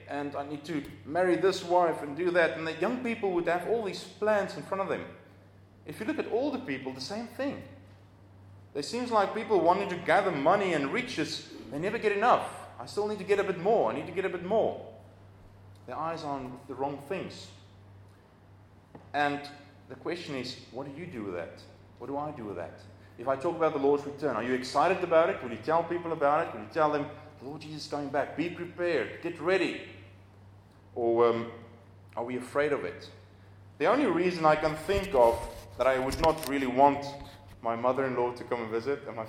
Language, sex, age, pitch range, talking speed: English, male, 30-49, 110-165 Hz, 220 wpm